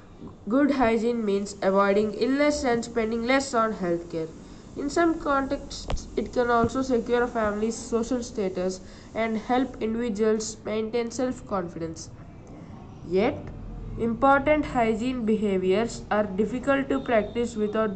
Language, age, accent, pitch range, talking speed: English, 20-39, Indian, 195-245 Hz, 115 wpm